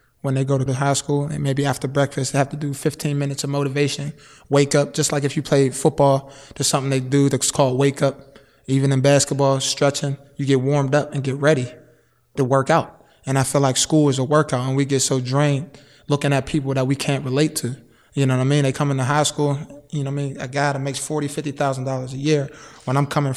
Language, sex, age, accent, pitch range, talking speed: English, male, 20-39, American, 135-150 Hz, 250 wpm